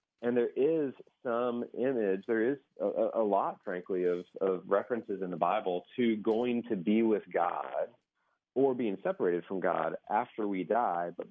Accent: American